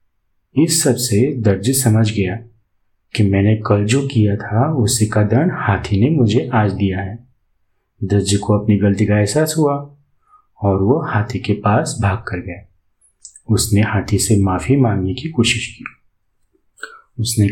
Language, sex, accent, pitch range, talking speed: Hindi, male, native, 100-130 Hz, 145 wpm